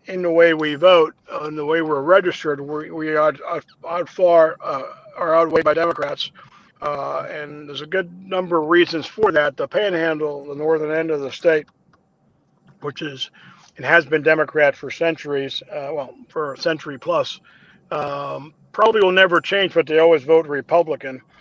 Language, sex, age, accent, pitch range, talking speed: English, male, 50-69, American, 150-175 Hz, 180 wpm